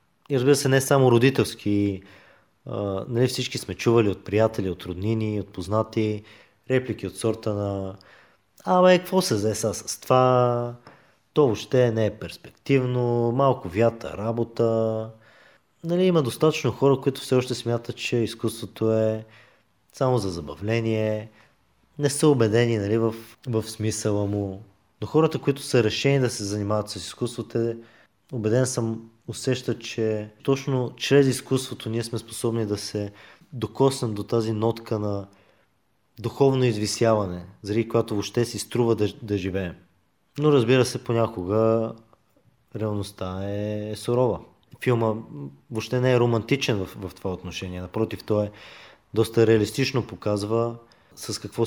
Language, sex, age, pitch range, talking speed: Bulgarian, male, 20-39, 105-125 Hz, 140 wpm